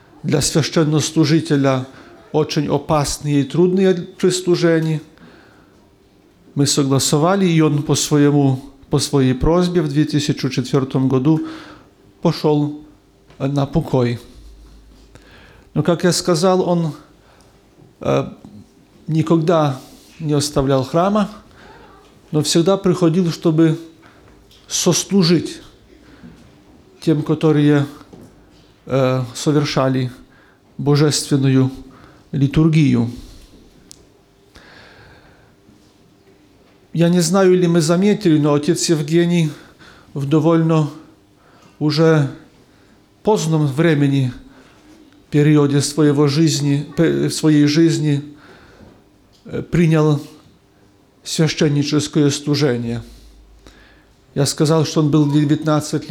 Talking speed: 70 wpm